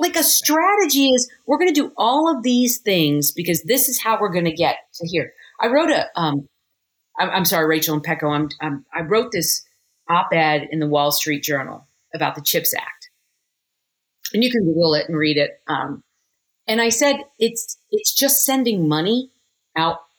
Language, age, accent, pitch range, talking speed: English, 40-59, American, 165-250 Hz, 195 wpm